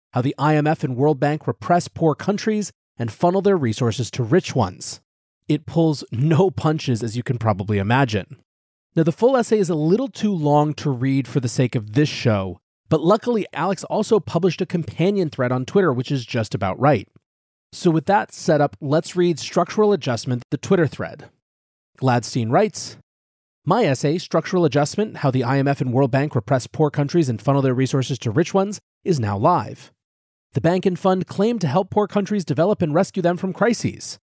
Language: English